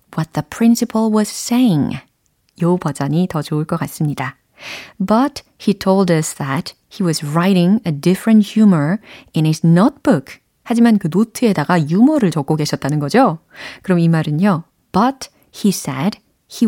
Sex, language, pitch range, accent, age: female, Korean, 155-225 Hz, native, 30-49